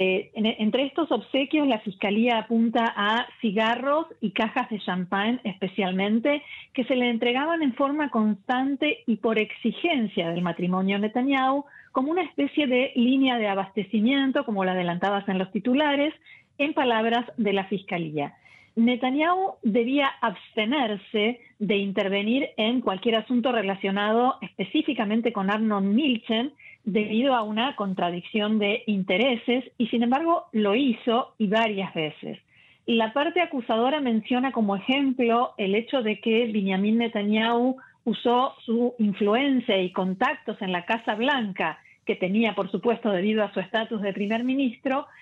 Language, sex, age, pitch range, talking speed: Spanish, female, 40-59, 205-255 Hz, 140 wpm